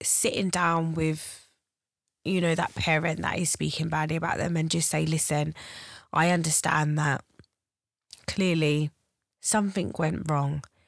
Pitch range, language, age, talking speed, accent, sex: 140-165 Hz, English, 20-39, 130 wpm, British, female